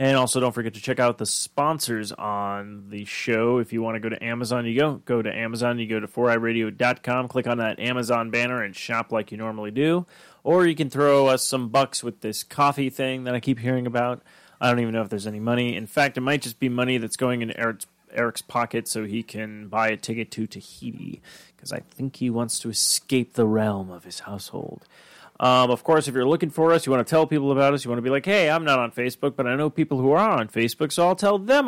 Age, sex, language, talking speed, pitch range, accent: 30-49, male, English, 250 wpm, 115-145 Hz, American